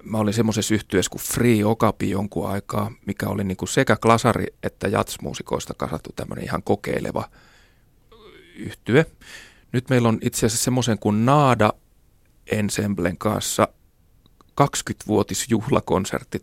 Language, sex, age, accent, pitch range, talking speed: Finnish, male, 30-49, native, 100-120 Hz, 115 wpm